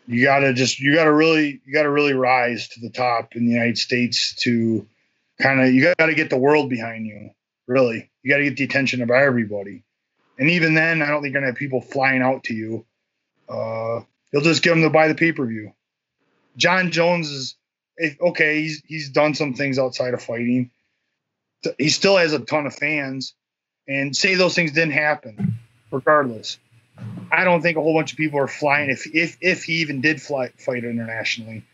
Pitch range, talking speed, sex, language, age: 125-155 Hz, 210 wpm, male, English, 20-39